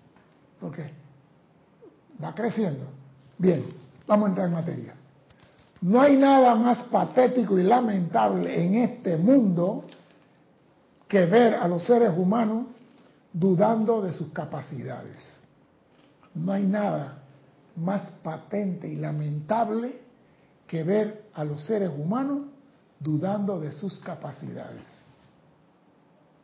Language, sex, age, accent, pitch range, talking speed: Spanish, male, 60-79, American, 165-225 Hz, 100 wpm